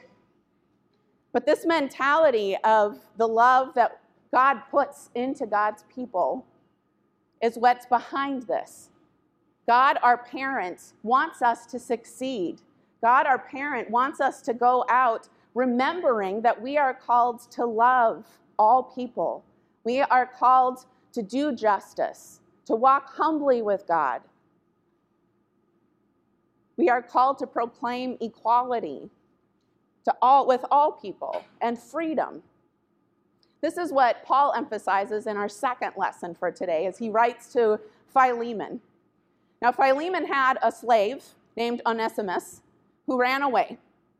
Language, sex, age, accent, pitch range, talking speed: English, female, 30-49, American, 225-270 Hz, 120 wpm